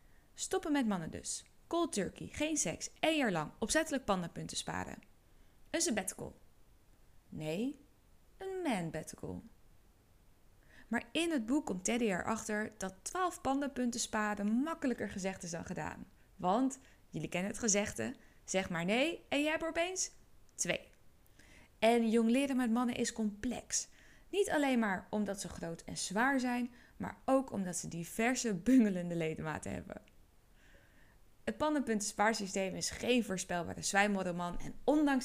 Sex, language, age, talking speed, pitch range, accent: female, Dutch, 20-39, 140 wpm, 185-270 Hz, Dutch